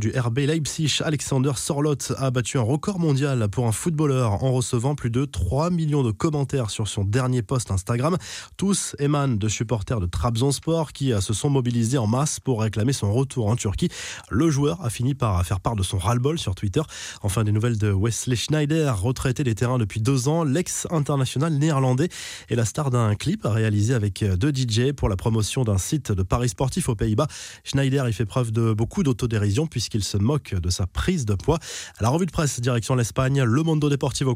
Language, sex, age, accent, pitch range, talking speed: French, male, 20-39, French, 110-145 Hz, 200 wpm